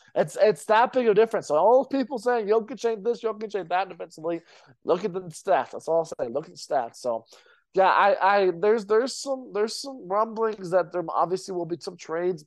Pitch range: 160-210 Hz